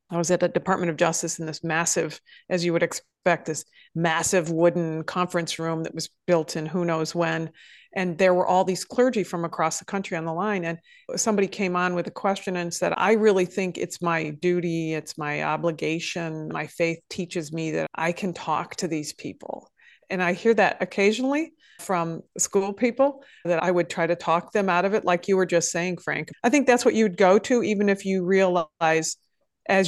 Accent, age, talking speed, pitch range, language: American, 40-59, 210 wpm, 165-195 Hz, English